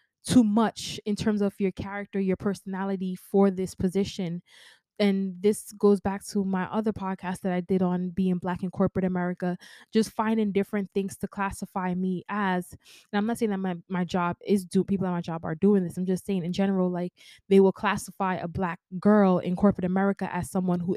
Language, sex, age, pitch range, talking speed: English, female, 20-39, 180-200 Hz, 205 wpm